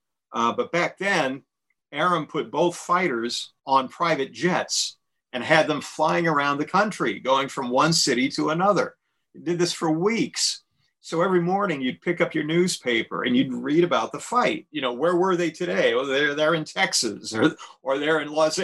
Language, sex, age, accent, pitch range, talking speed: English, male, 50-69, American, 140-190 Hz, 185 wpm